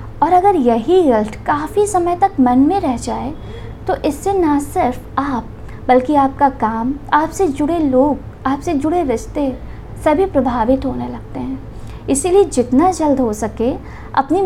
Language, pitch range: Hindi, 240-335 Hz